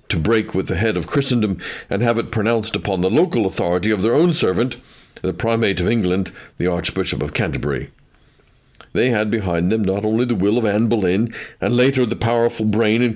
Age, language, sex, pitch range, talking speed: 60-79, English, male, 100-130 Hz, 200 wpm